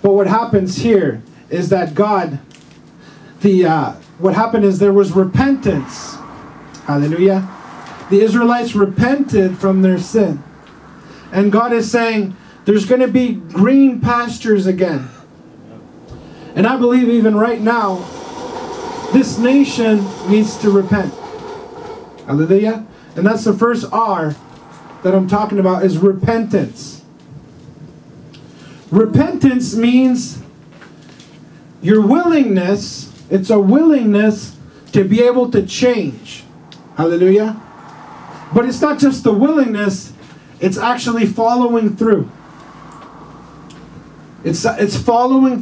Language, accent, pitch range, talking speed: English, American, 190-240 Hz, 110 wpm